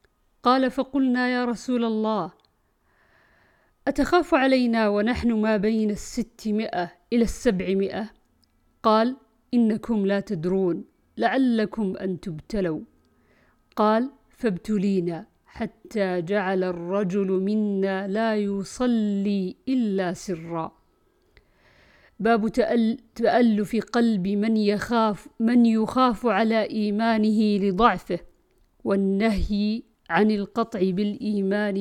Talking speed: 85 wpm